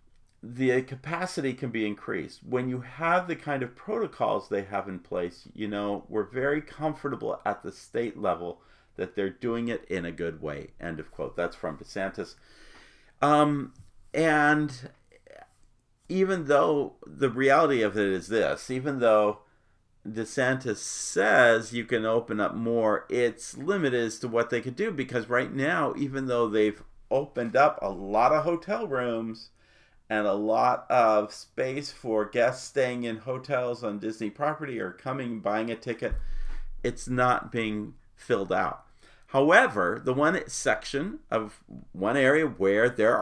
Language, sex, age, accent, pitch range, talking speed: English, male, 50-69, American, 105-135 Hz, 155 wpm